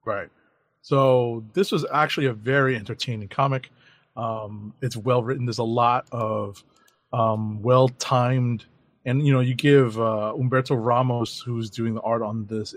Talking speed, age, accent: 155 wpm, 30-49, American